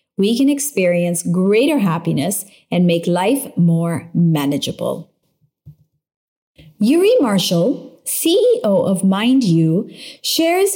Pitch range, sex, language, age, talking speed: 170-240 Hz, female, English, 30-49, 90 wpm